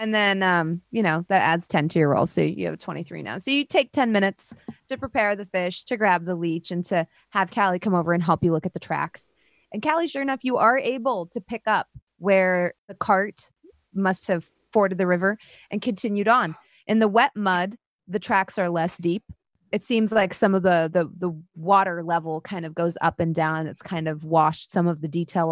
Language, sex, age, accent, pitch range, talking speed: English, female, 20-39, American, 175-215 Hz, 225 wpm